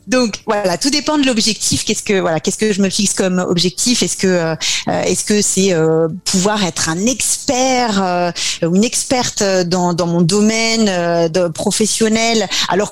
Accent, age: French, 30-49